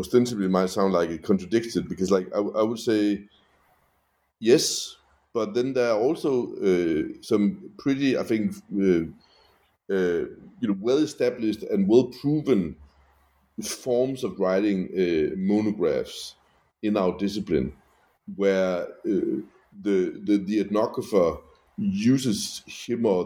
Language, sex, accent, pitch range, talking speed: English, male, Danish, 95-115 Hz, 125 wpm